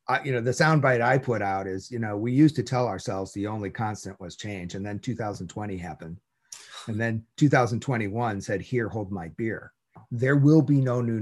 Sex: male